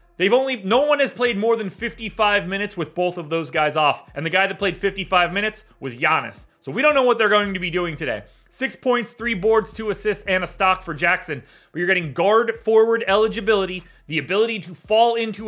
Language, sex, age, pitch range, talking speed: English, male, 30-49, 175-220 Hz, 225 wpm